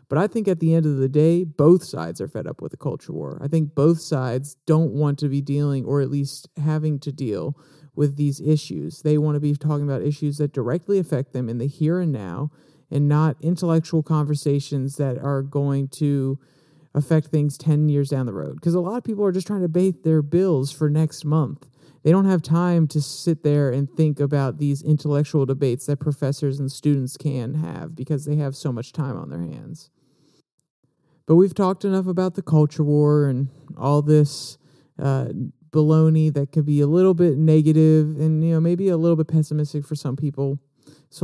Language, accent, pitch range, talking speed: English, American, 145-160 Hz, 205 wpm